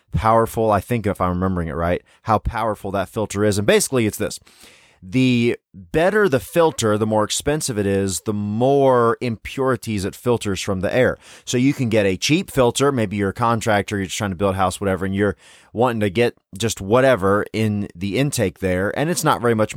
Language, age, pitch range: English, 30-49, 100-135 Hz